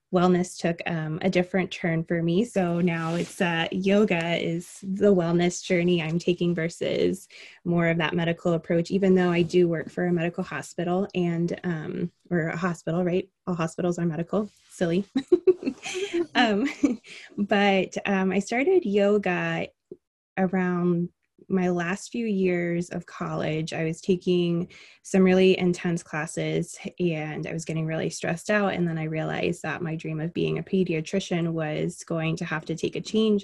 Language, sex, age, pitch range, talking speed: English, female, 20-39, 170-200 Hz, 160 wpm